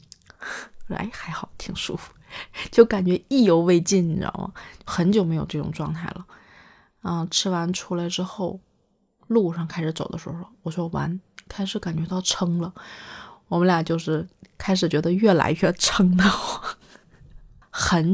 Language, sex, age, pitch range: Chinese, female, 30-49, 165-190 Hz